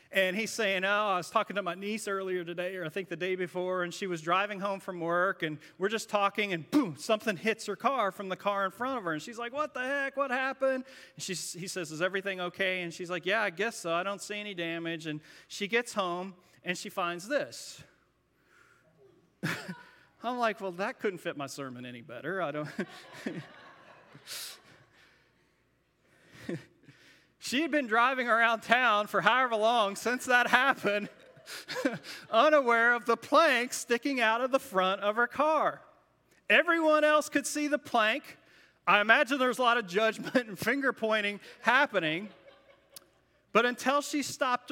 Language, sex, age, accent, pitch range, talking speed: English, male, 30-49, American, 175-240 Hz, 180 wpm